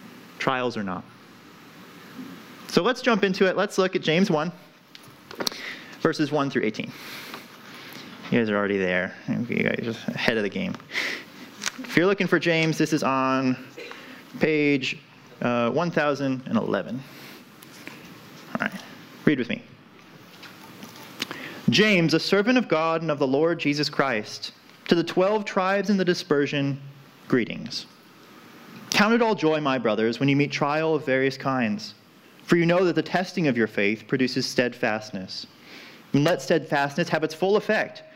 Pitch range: 135-185 Hz